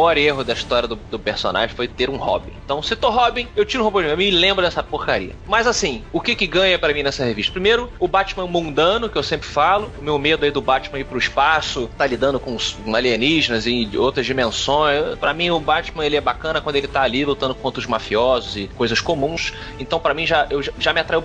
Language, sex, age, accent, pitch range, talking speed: Portuguese, male, 20-39, Brazilian, 130-175 Hz, 240 wpm